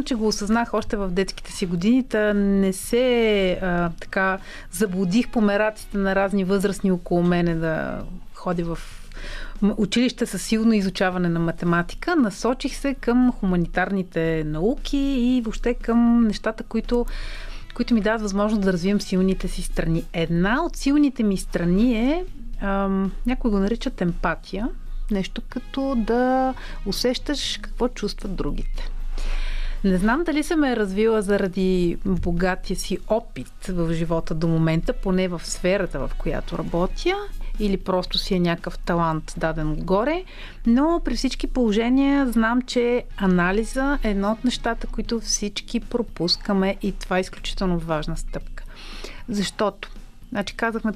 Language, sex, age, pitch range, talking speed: Bulgarian, female, 30-49, 185-240 Hz, 135 wpm